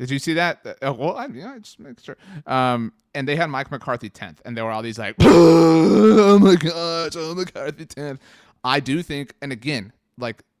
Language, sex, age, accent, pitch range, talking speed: English, male, 30-49, American, 115-150 Hz, 205 wpm